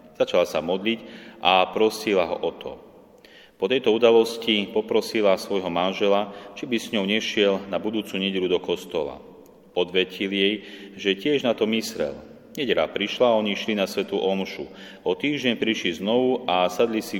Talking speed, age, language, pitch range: 155 wpm, 30-49, Slovak, 95-115 Hz